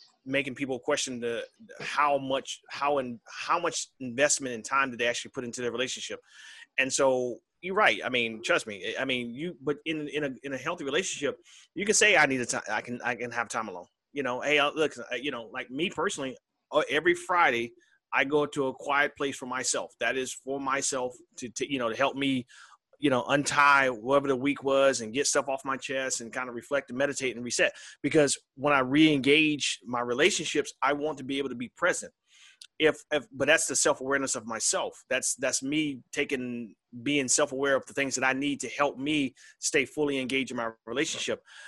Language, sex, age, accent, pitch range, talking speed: English, male, 30-49, American, 125-145 Hz, 210 wpm